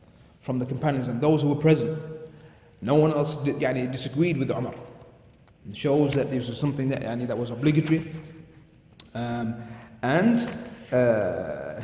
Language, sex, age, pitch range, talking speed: English, male, 30-49, 130-160 Hz, 155 wpm